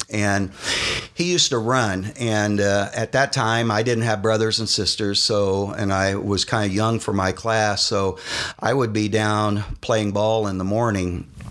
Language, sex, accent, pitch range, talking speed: English, male, American, 95-115 Hz, 190 wpm